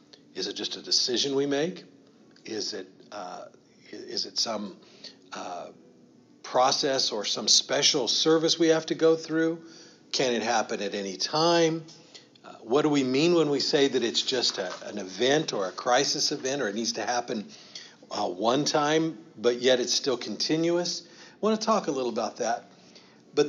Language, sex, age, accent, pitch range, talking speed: English, male, 50-69, American, 125-180 Hz, 175 wpm